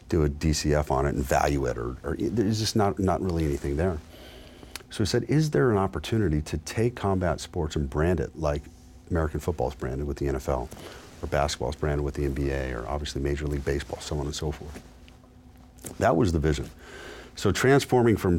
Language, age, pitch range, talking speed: English, 40-59, 75-90 Hz, 200 wpm